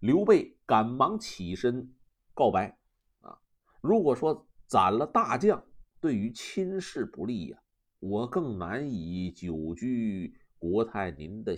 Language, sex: Chinese, male